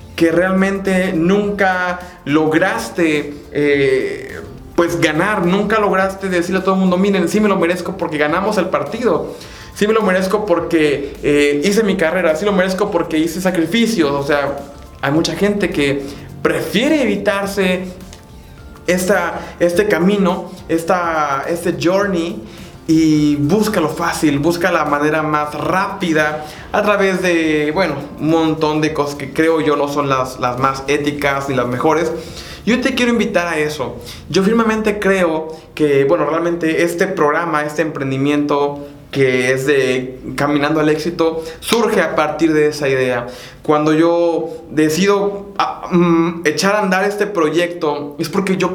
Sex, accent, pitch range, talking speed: male, Mexican, 150-190 Hz, 150 wpm